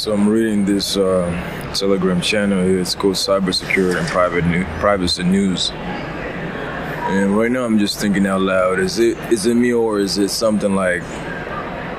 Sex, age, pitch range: male, 20-39, 95-110 Hz